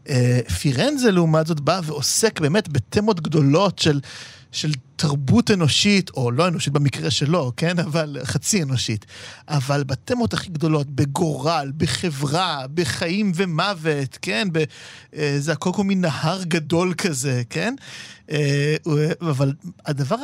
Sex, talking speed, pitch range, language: male, 135 wpm, 140-185 Hz, Hebrew